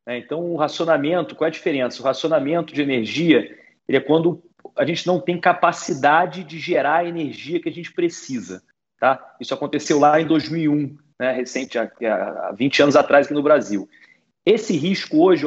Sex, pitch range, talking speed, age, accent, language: male, 140-175 Hz, 170 wpm, 40-59, Brazilian, Portuguese